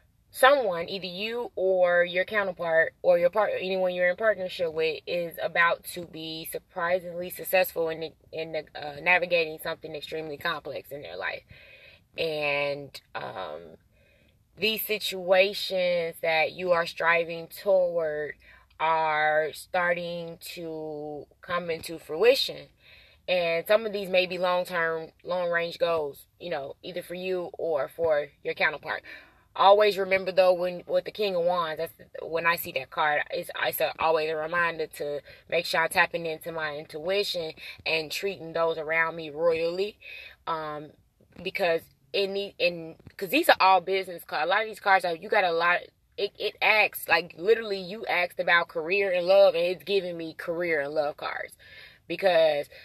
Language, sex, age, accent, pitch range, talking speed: English, female, 20-39, American, 160-195 Hz, 160 wpm